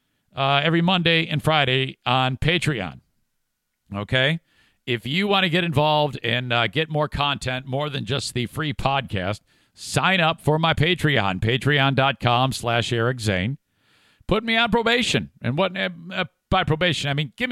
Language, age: English, 50-69